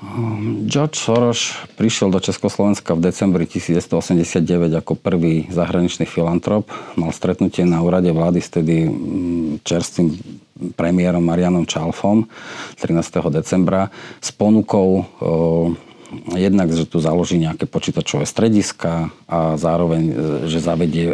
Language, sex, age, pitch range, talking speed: Slovak, male, 40-59, 85-105 Hz, 110 wpm